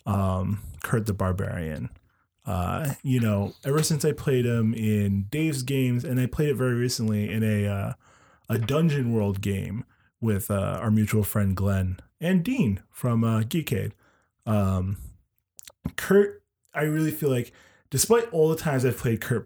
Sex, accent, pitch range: male, American, 110-150 Hz